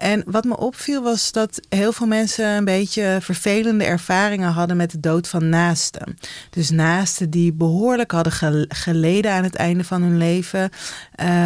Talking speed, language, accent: 160 wpm, Dutch, Dutch